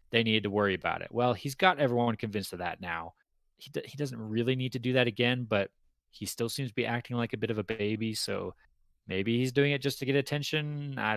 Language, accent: English, American